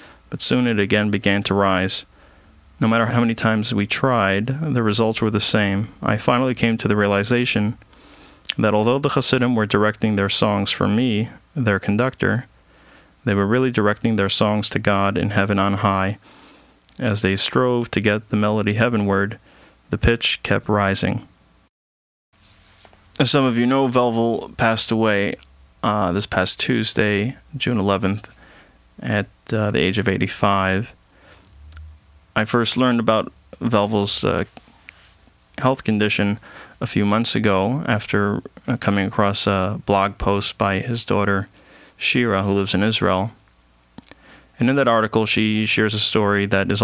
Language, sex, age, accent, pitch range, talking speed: English, male, 30-49, American, 95-110 Hz, 150 wpm